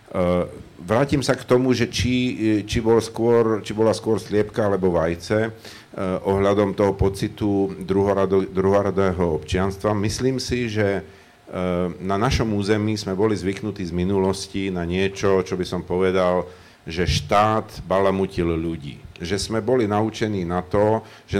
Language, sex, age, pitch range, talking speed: Slovak, male, 50-69, 95-110 Hz, 135 wpm